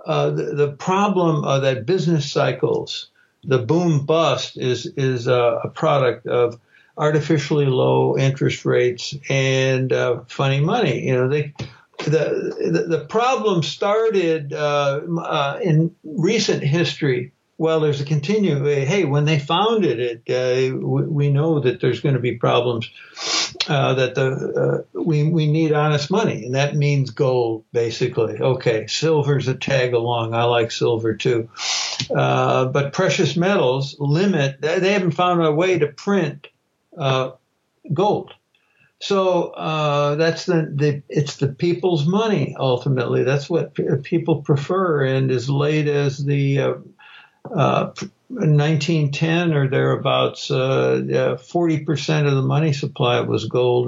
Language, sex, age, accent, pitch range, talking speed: English, male, 60-79, American, 130-170 Hz, 145 wpm